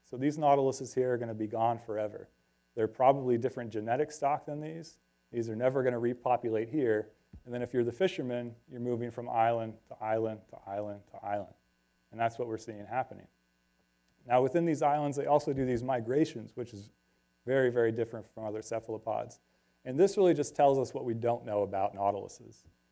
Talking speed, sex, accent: 190 wpm, male, American